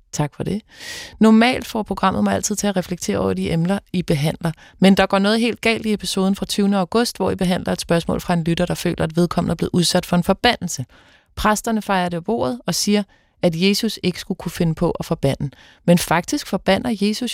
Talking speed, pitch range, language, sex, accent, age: 220 wpm, 165-205 Hz, Danish, female, native, 30-49